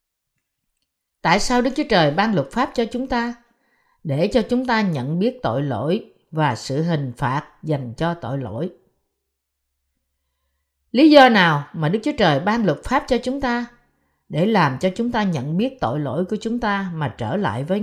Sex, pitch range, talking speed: female, 155-230 Hz, 190 wpm